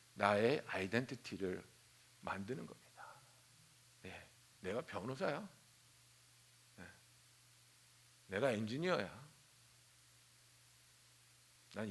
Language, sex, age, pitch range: Korean, male, 60-79, 120-190 Hz